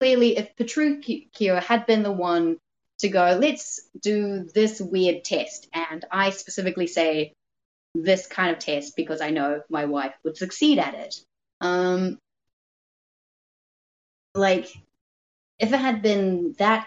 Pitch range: 165-210 Hz